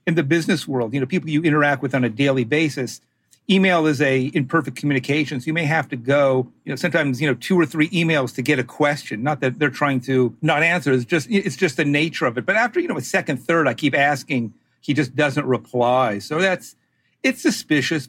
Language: English